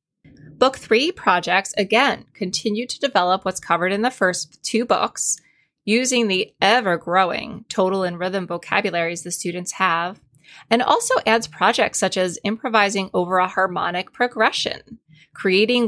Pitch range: 180-230 Hz